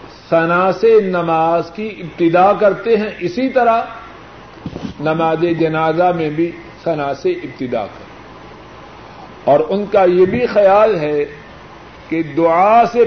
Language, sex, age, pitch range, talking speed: Urdu, male, 50-69, 160-200 Hz, 125 wpm